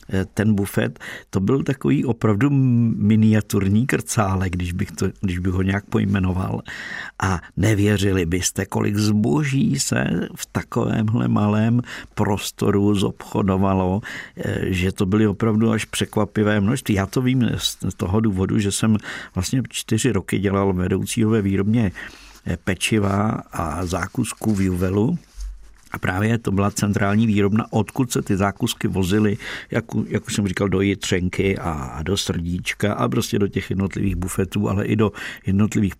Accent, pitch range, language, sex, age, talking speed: native, 95-110 Hz, Czech, male, 50-69, 135 wpm